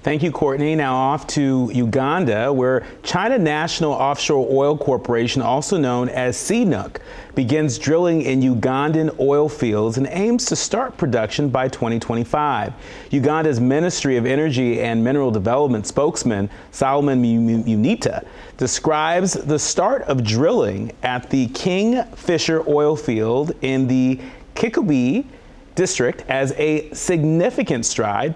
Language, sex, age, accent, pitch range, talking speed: English, male, 40-59, American, 120-150 Hz, 130 wpm